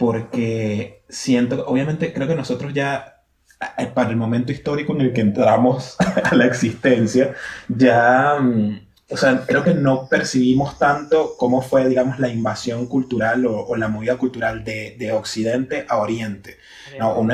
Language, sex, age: Spanish, male, 20-39